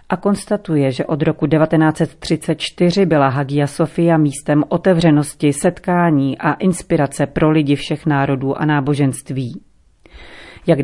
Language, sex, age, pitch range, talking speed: Czech, female, 40-59, 145-175 Hz, 115 wpm